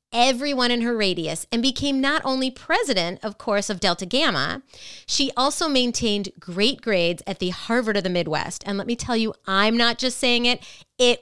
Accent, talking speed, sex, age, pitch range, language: American, 195 wpm, female, 30-49, 185-245 Hz, English